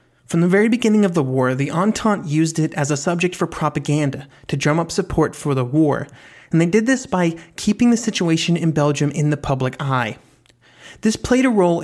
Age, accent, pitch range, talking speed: 30-49, American, 140-185 Hz, 210 wpm